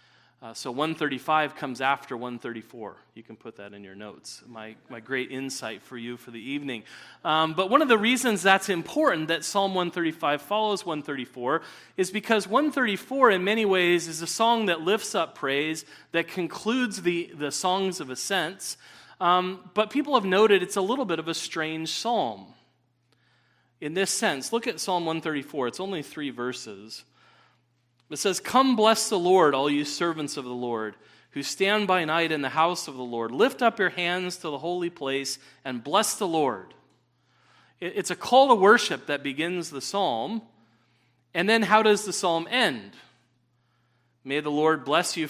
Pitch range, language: 125-195 Hz, English